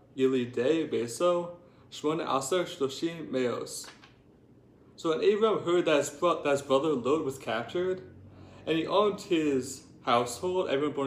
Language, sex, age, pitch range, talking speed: English, male, 30-49, 135-185 Hz, 110 wpm